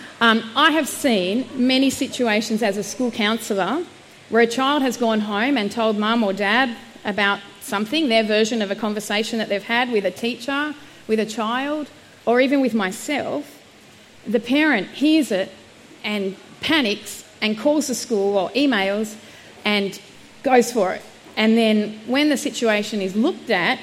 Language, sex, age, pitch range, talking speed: English, female, 40-59, 200-250 Hz, 165 wpm